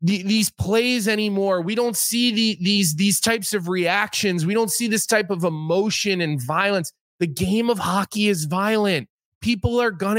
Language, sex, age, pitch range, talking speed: English, male, 20-39, 160-210 Hz, 170 wpm